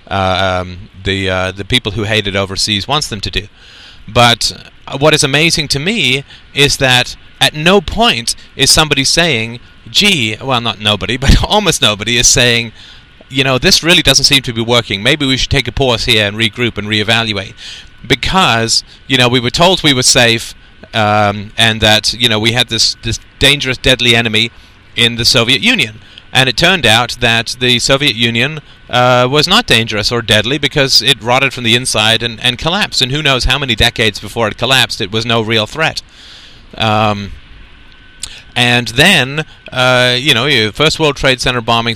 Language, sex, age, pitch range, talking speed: English, male, 30-49, 105-135 Hz, 185 wpm